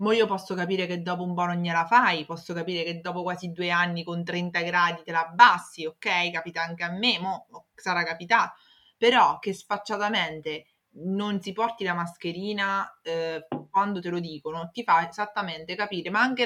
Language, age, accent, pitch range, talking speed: Italian, 20-39, native, 175-225 Hz, 190 wpm